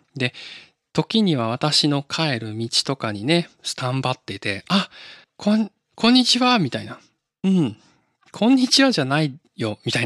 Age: 20-39